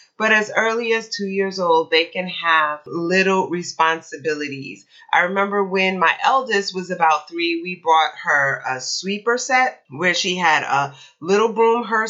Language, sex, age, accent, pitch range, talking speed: English, female, 30-49, American, 170-225 Hz, 165 wpm